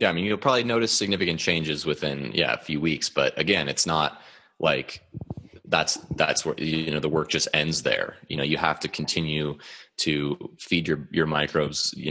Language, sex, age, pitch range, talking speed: English, male, 20-39, 75-85 Hz, 200 wpm